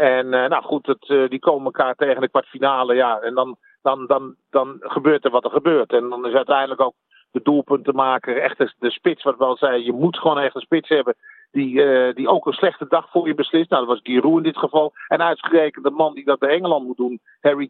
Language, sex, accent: Dutch, male, Dutch